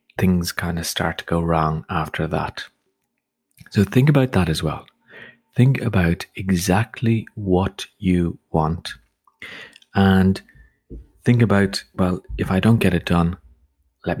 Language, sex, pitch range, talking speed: English, male, 85-100 Hz, 135 wpm